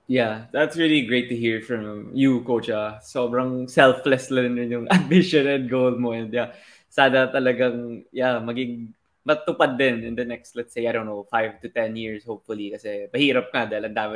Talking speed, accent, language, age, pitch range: 185 wpm, native, Filipino, 20-39, 110-130 Hz